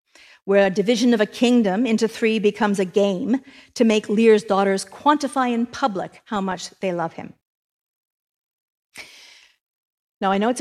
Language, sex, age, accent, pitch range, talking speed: English, female, 50-69, American, 200-245 Hz, 155 wpm